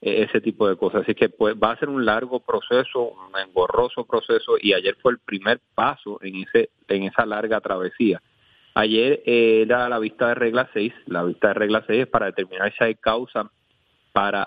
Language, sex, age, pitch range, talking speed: Spanish, male, 30-49, 100-125 Hz, 200 wpm